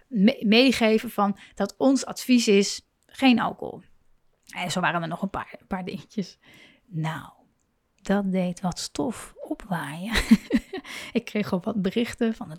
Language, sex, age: Dutch, female, 30-49